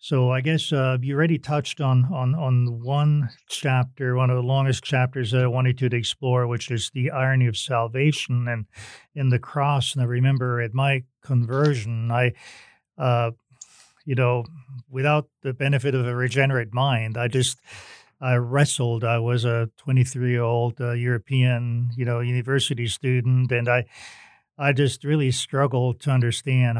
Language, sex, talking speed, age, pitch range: English, male, 170 wpm, 40-59, 120-135 Hz